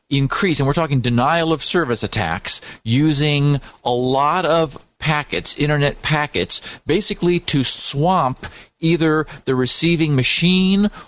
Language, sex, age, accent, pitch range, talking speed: English, male, 40-59, American, 125-165 Hz, 120 wpm